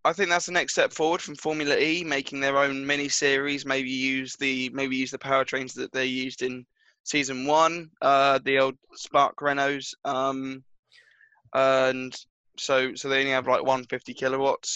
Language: English